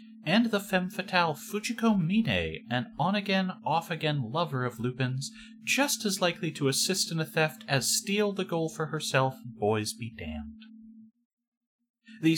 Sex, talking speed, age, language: male, 145 wpm, 30-49, English